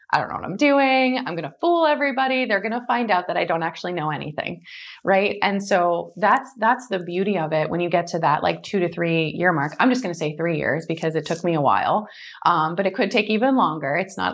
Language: English